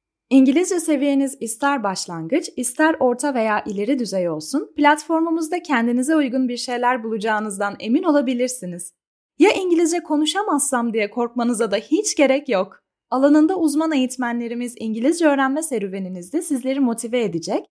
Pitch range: 220-300 Hz